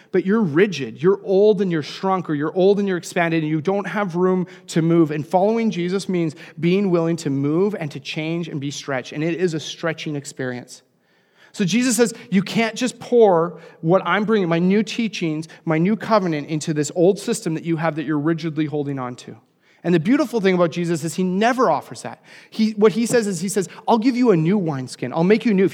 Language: English